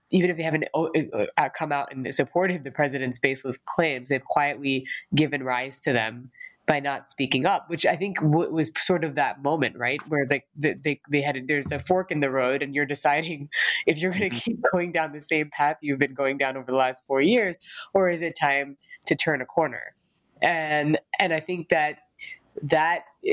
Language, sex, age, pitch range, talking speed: English, female, 20-39, 135-165 Hz, 200 wpm